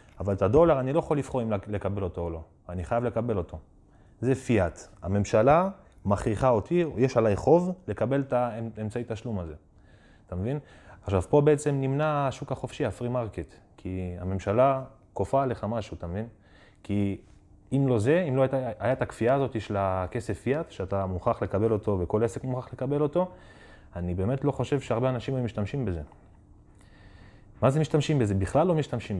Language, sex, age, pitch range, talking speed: Hebrew, male, 20-39, 100-135 Hz, 125 wpm